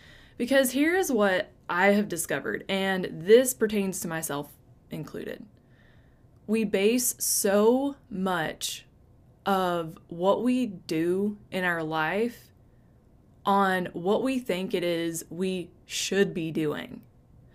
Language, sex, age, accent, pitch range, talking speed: English, female, 20-39, American, 160-205 Hz, 115 wpm